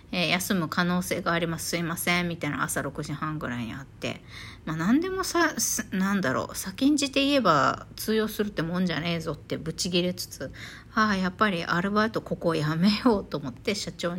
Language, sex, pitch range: Japanese, female, 160-230 Hz